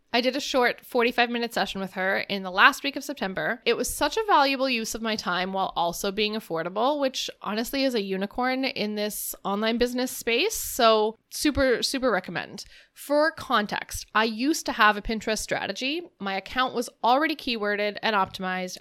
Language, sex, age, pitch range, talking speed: English, female, 20-39, 195-260 Hz, 180 wpm